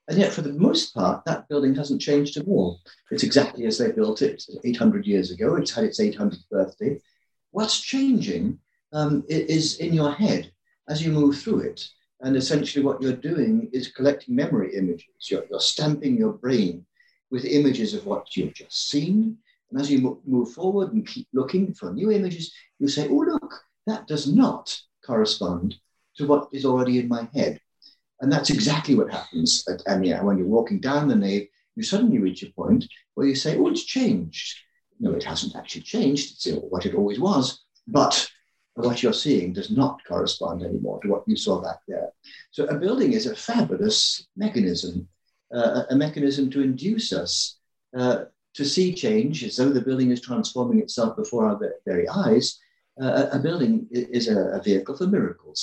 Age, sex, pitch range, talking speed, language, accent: 50-69, male, 135-220 Hz, 180 wpm, English, British